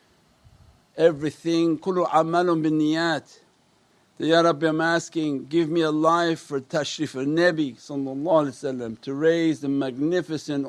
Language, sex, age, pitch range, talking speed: English, male, 60-79, 145-175 Hz, 120 wpm